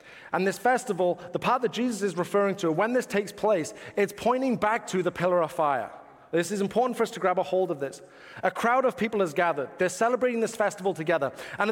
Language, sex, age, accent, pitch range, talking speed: English, male, 30-49, British, 170-215 Hz, 230 wpm